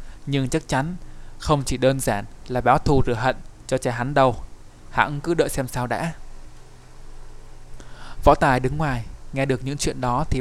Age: 20-39